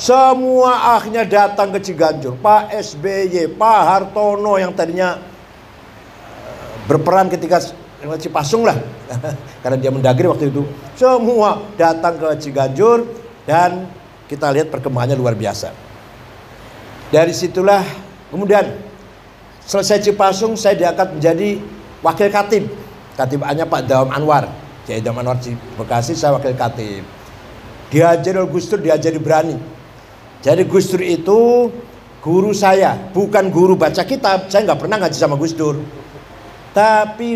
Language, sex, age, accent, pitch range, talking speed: Indonesian, male, 50-69, native, 145-195 Hz, 120 wpm